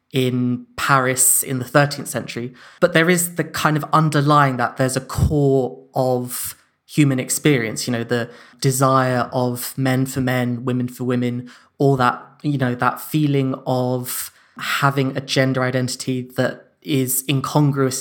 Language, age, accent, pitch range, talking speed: English, 20-39, British, 130-140 Hz, 150 wpm